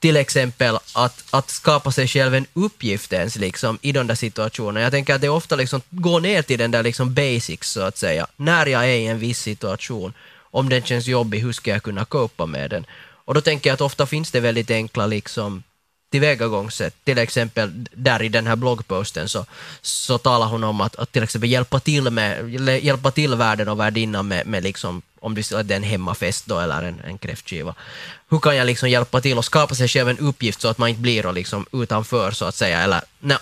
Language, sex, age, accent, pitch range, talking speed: Finnish, male, 20-39, native, 110-135 Hz, 220 wpm